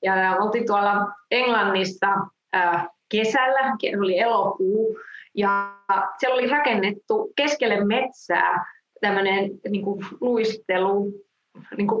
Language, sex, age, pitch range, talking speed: English, female, 30-49, 190-235 Hz, 80 wpm